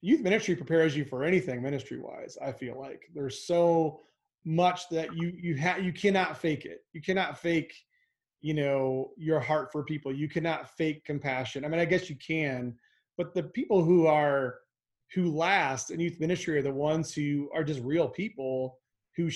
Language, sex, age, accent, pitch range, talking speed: English, male, 30-49, American, 145-180 Hz, 185 wpm